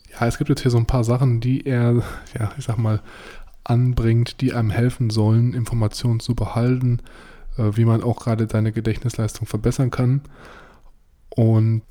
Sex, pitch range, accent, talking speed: male, 110-125 Hz, German, 160 wpm